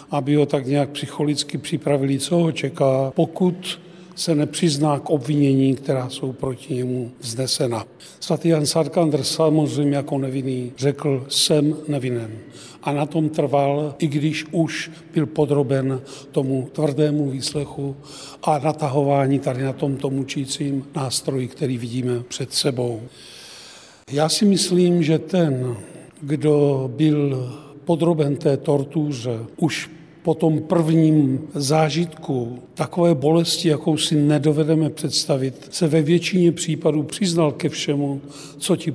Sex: male